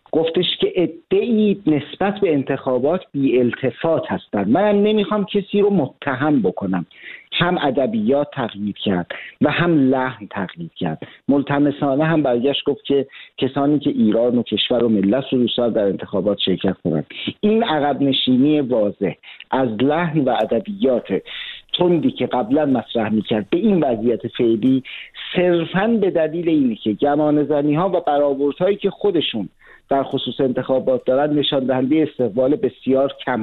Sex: male